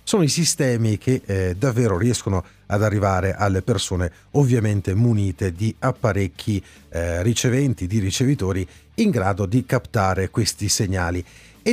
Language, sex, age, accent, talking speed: Italian, male, 40-59, native, 135 wpm